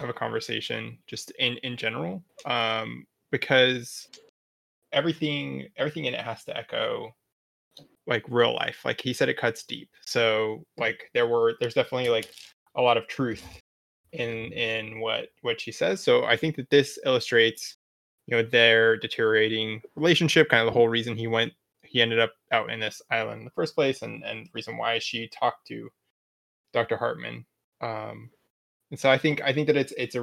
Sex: male